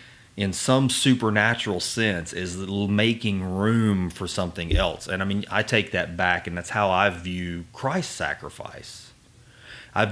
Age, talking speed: 30-49, 150 wpm